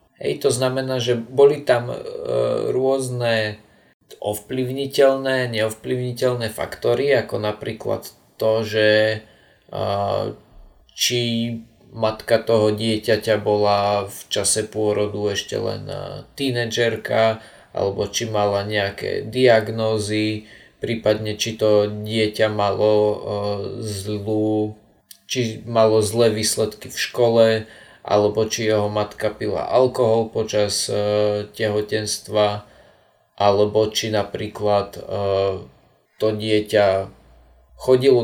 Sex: male